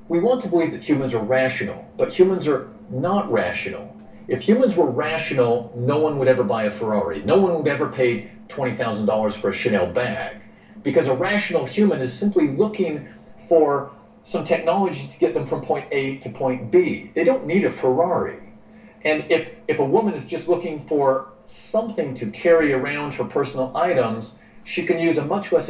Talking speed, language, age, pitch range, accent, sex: 185 wpm, English, 50-69, 130-175 Hz, American, male